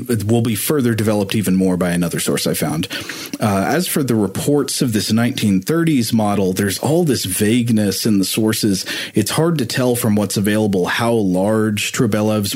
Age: 30-49